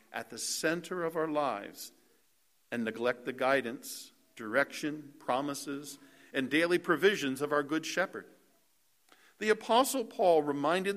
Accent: American